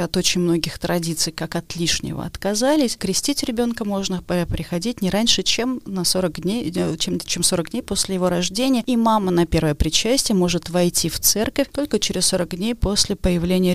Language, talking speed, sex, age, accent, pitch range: Russian, 175 wpm, female, 30-49, native, 175-220 Hz